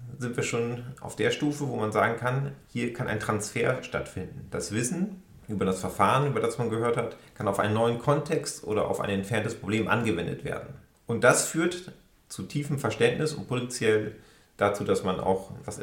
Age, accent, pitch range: 40-59, German, 100-135 Hz